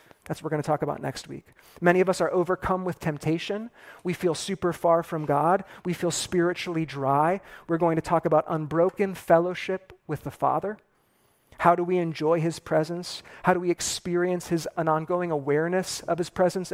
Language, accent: English, American